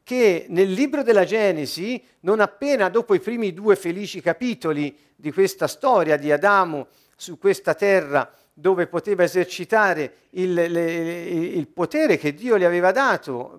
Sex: male